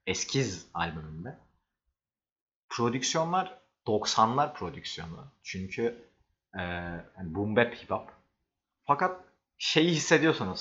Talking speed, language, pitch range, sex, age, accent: 70 wpm, Turkish, 95-130 Hz, male, 40-59, native